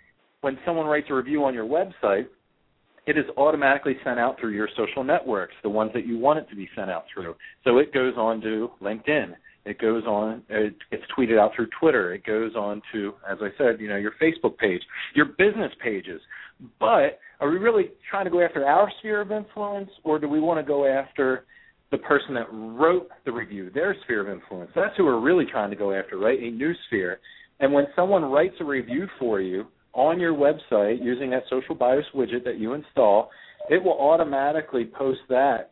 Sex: male